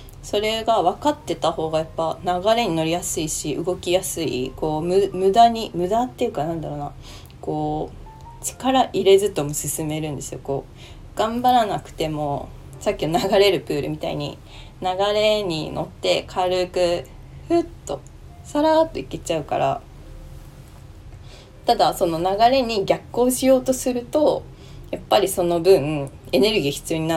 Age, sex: 20-39, female